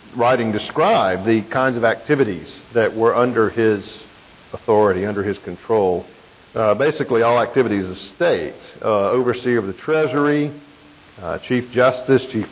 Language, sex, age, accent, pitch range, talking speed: English, male, 50-69, American, 100-130 Hz, 140 wpm